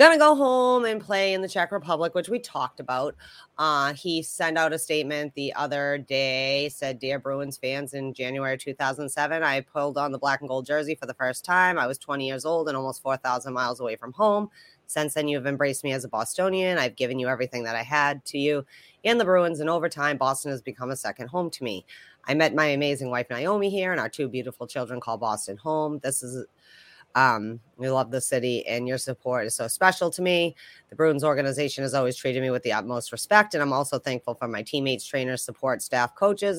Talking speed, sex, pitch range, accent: 225 wpm, female, 130-160 Hz, American